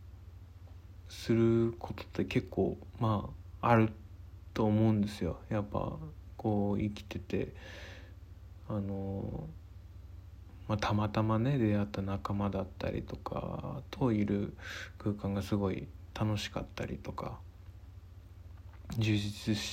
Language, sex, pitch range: Japanese, male, 90-110 Hz